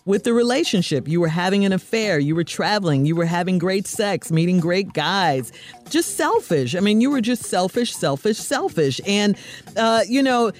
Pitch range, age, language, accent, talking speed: 160-210 Hz, 50-69, English, American, 185 wpm